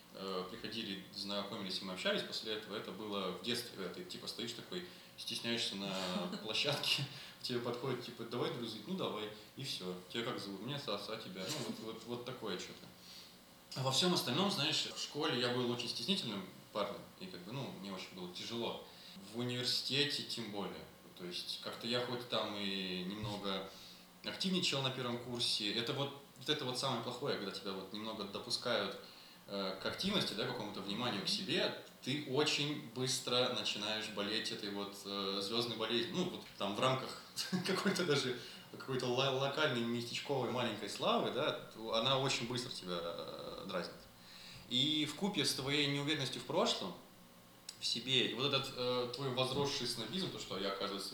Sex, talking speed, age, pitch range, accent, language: male, 170 wpm, 20-39, 100-135 Hz, native, Russian